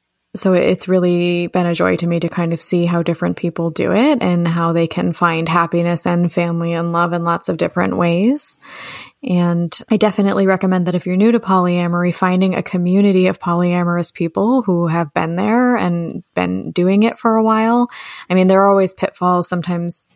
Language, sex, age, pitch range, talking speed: English, female, 20-39, 170-190 Hz, 195 wpm